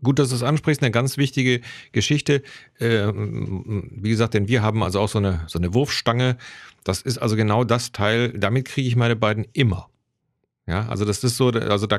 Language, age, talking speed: German, 40-59, 200 wpm